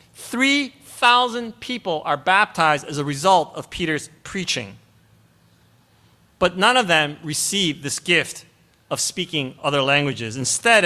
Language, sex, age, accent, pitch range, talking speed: English, male, 30-49, American, 140-215 Hz, 125 wpm